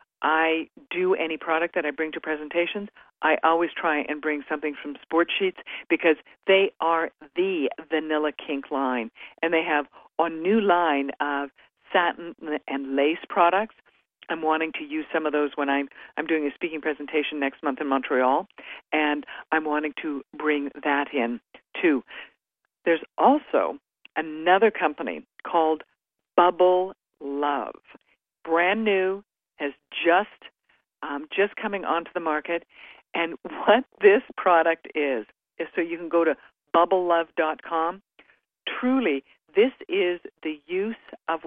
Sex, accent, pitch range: female, American, 150-185 Hz